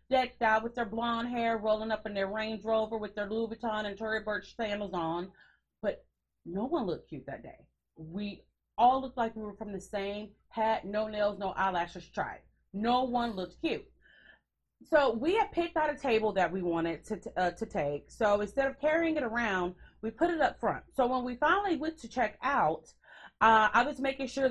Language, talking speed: English, 210 wpm